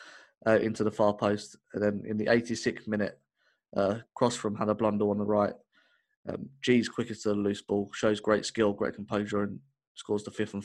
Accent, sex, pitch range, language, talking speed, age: British, male, 105-120 Hz, English, 205 wpm, 20-39